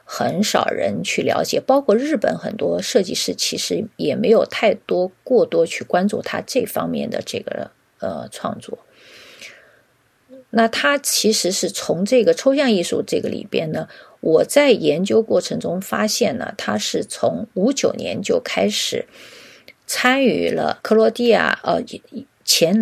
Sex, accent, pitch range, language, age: female, native, 195-260 Hz, Chinese, 50-69